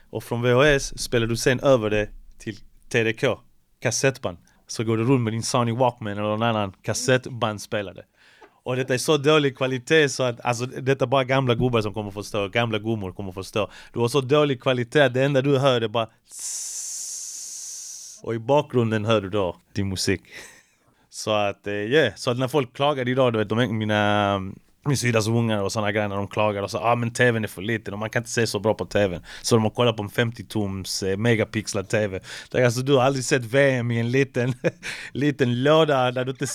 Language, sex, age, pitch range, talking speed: Swedish, male, 30-49, 110-140 Hz, 220 wpm